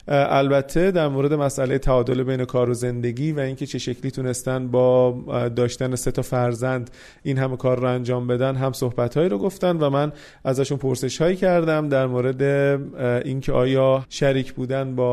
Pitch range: 130-155 Hz